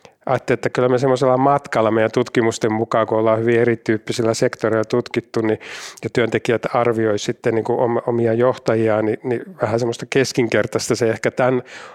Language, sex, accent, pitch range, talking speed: Finnish, male, native, 115-135 Hz, 160 wpm